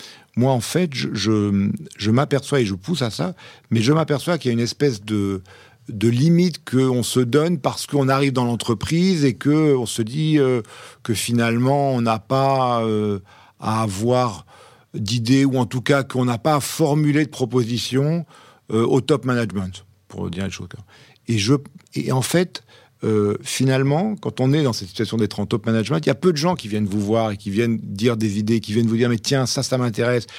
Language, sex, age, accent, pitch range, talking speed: French, male, 50-69, French, 110-140 Hz, 210 wpm